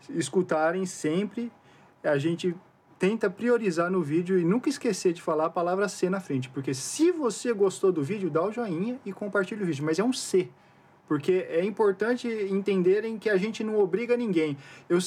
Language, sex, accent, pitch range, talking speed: Portuguese, male, Brazilian, 160-205 Hz, 185 wpm